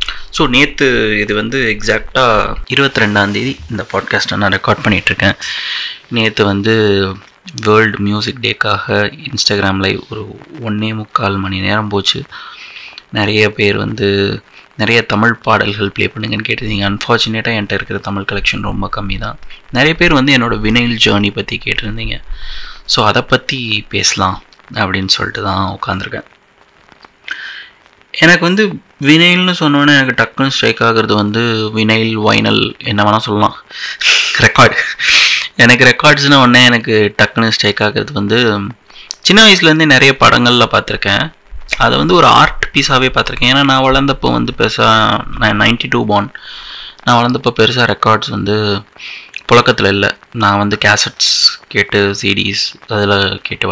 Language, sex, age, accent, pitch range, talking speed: Tamil, male, 20-39, native, 105-125 Hz, 125 wpm